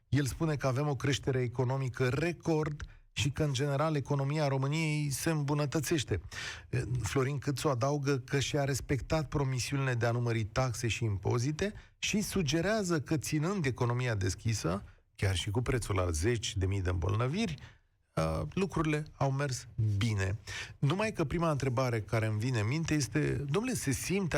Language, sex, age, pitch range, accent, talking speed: Romanian, male, 40-59, 120-155 Hz, native, 150 wpm